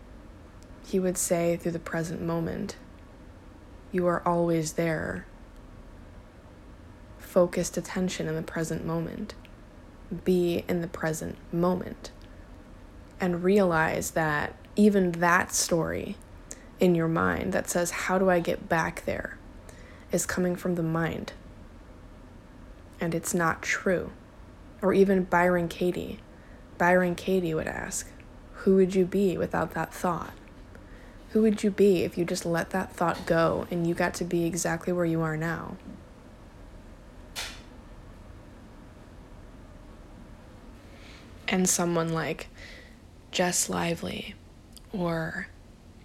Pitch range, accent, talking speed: 120-180 Hz, American, 115 wpm